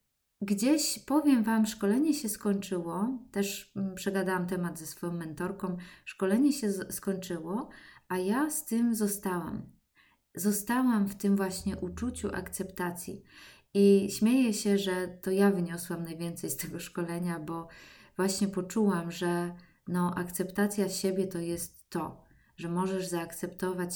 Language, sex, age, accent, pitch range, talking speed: Polish, female, 20-39, native, 175-205 Hz, 125 wpm